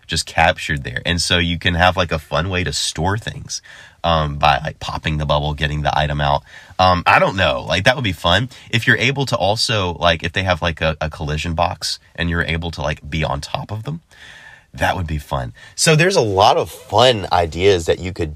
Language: English